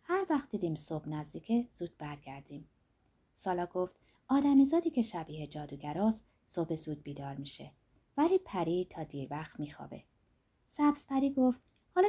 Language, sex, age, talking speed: Persian, female, 30-49, 135 wpm